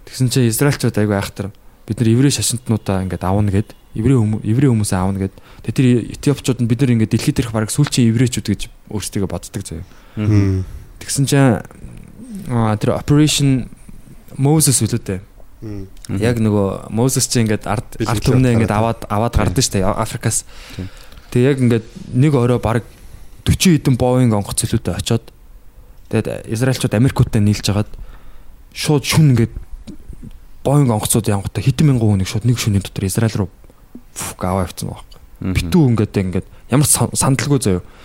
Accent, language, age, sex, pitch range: native, Korean, 20-39, male, 105-135 Hz